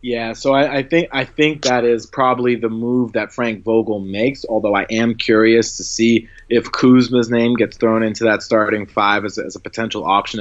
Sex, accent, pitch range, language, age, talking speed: male, American, 105-120 Hz, English, 30-49, 215 wpm